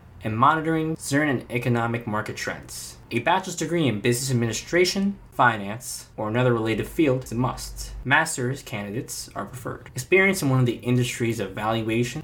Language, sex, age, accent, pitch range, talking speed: English, male, 20-39, American, 110-135 Hz, 155 wpm